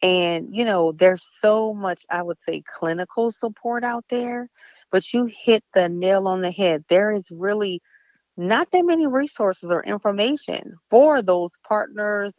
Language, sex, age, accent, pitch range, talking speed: English, female, 30-49, American, 160-205 Hz, 160 wpm